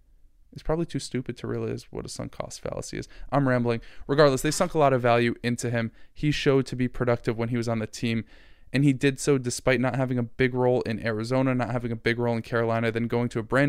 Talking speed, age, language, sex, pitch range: 255 wpm, 20-39, English, male, 115-125 Hz